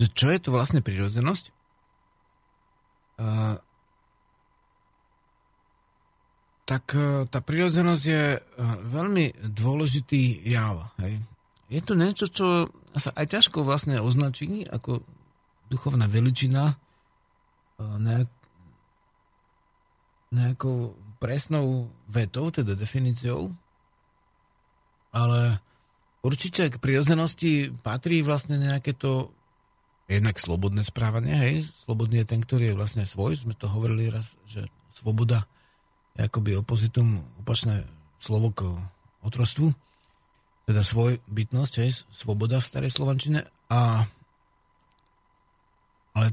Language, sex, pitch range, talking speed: Slovak, male, 110-145 Hz, 95 wpm